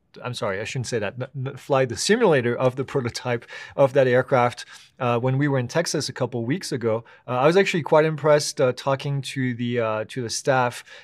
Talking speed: 215 wpm